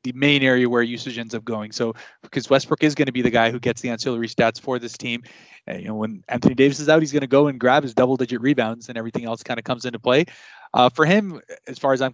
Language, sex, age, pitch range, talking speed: English, male, 20-39, 115-135 Hz, 280 wpm